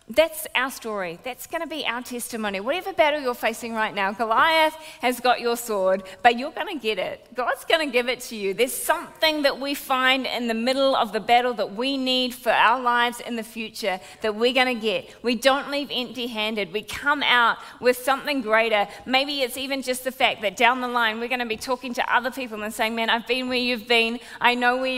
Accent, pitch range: Australian, 225-270 Hz